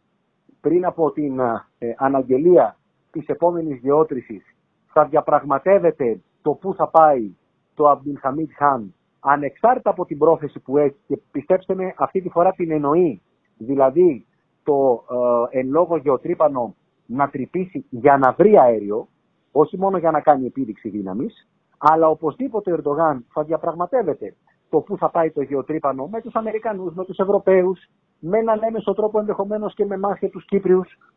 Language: Greek